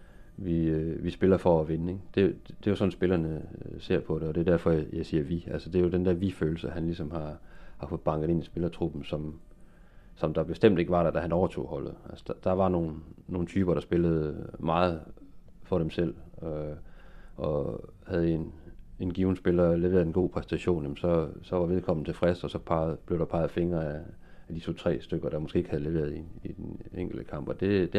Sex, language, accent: male, Danish, native